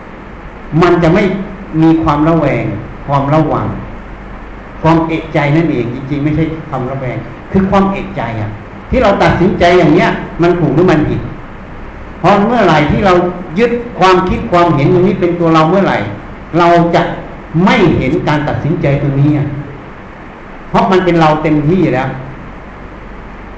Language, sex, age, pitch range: Thai, male, 60-79, 125-175 Hz